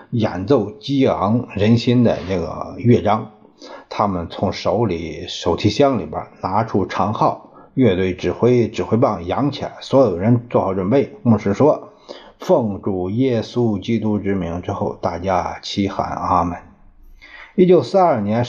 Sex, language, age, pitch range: male, Chinese, 50-69, 95-125 Hz